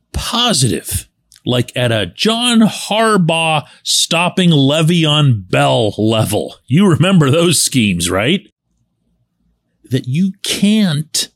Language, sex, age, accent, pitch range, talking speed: English, male, 40-59, American, 125-185 Hz, 95 wpm